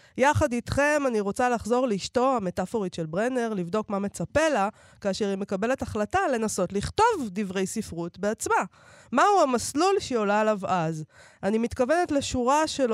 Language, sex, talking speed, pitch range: Hebrew, female, 150 wpm, 185-250 Hz